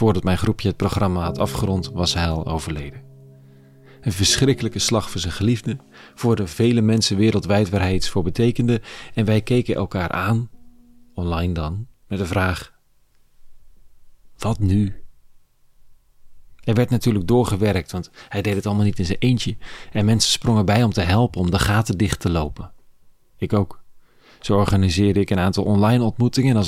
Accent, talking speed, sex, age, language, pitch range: Dutch, 170 wpm, male, 40-59, Dutch, 90-115 Hz